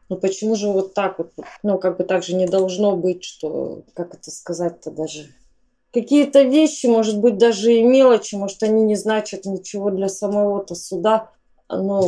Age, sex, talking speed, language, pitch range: 20-39, female, 175 wpm, Russian, 180-205 Hz